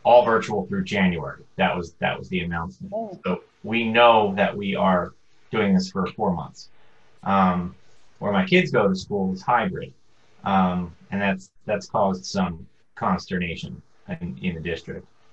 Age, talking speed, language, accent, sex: 30-49, 160 wpm, English, American, male